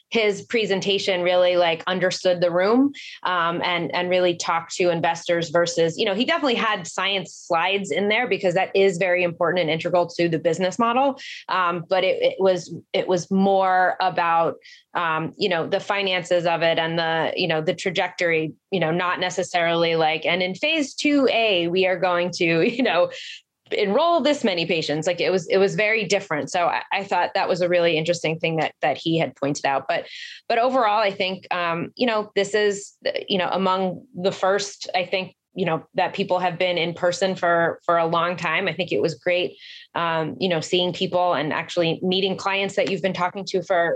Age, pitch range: 20-39, 170-195 Hz